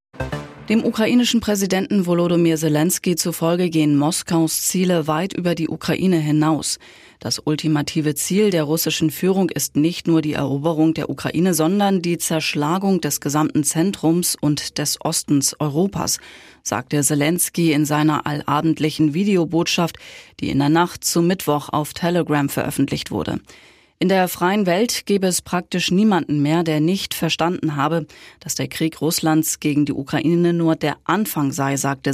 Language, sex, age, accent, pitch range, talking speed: German, female, 20-39, German, 150-175 Hz, 145 wpm